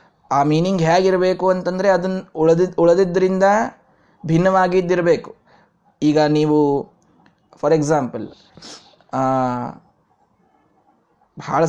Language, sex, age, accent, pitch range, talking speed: Kannada, male, 20-39, native, 170-230 Hz, 70 wpm